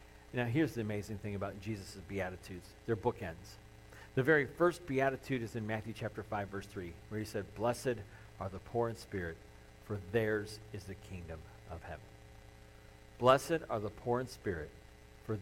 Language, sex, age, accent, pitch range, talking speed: English, male, 50-69, American, 100-125 Hz, 170 wpm